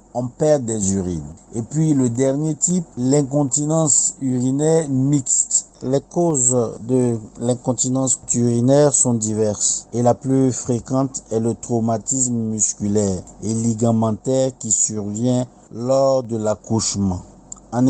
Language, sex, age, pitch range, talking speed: French, male, 50-69, 115-135 Hz, 115 wpm